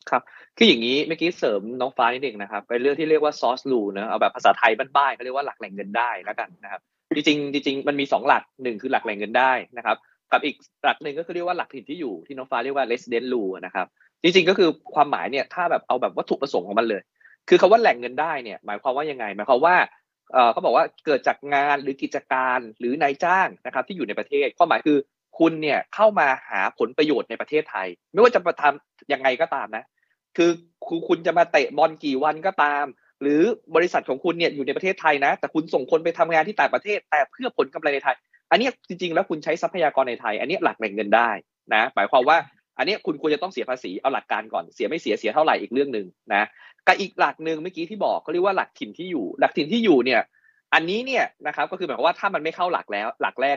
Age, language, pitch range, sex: 20-39, Thai, 135-180 Hz, male